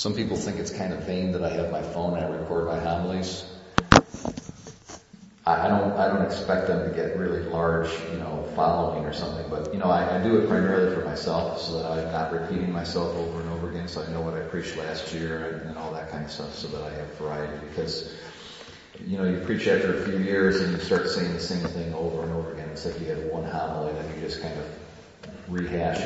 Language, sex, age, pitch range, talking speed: English, male, 40-59, 80-95 Hz, 240 wpm